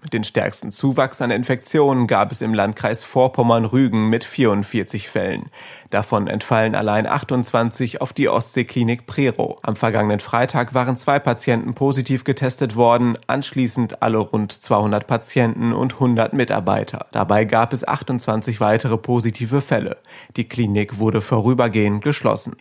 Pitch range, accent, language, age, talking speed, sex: 110-130 Hz, German, German, 30-49, 135 wpm, male